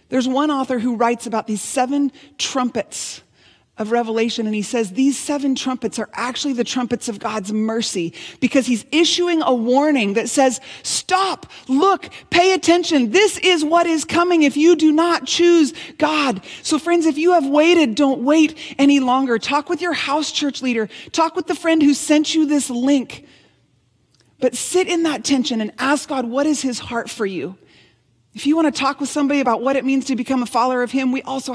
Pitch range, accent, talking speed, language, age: 230-300 Hz, American, 200 wpm, English, 30-49